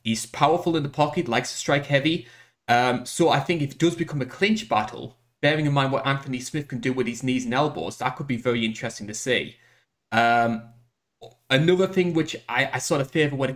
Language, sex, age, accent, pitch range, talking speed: English, male, 20-39, British, 120-145 Hz, 225 wpm